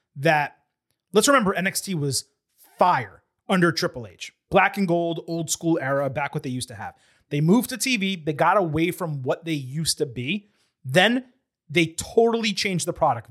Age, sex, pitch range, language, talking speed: 30-49, male, 140-185 Hz, English, 180 wpm